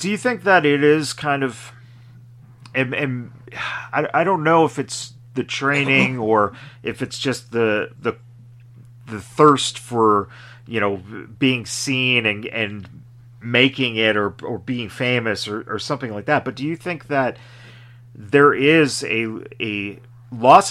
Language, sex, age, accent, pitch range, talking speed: English, male, 40-59, American, 110-130 Hz, 155 wpm